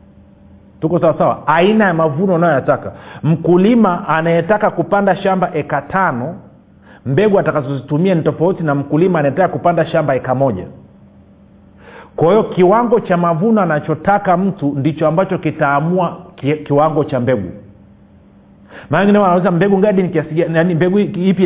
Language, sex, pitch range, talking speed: Swahili, male, 145-190 Hz, 130 wpm